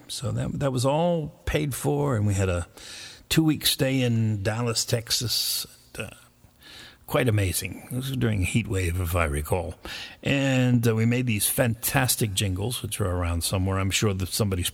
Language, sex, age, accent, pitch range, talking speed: English, male, 50-69, American, 100-125 Hz, 175 wpm